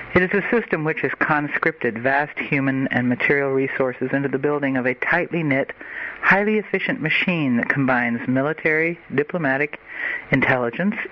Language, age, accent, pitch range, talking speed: English, 60-79, American, 130-165 Hz, 145 wpm